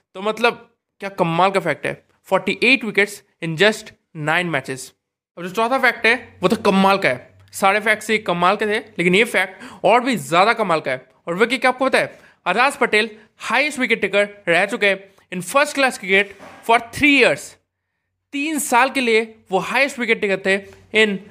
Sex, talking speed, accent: male, 200 wpm, native